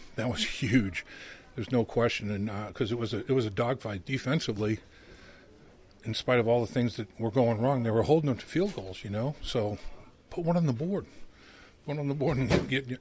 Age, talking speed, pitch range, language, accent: 50-69, 225 wpm, 110-125 Hz, English, American